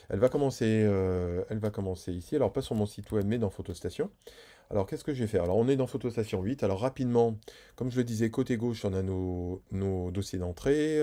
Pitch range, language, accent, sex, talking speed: 95-115 Hz, French, French, male, 220 wpm